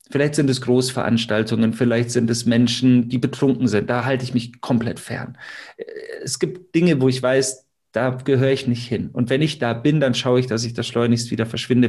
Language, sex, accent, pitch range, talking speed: German, male, German, 120-145 Hz, 210 wpm